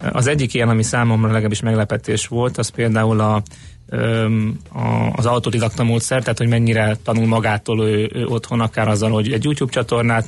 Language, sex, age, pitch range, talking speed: Hungarian, male, 30-49, 110-120 Hz, 175 wpm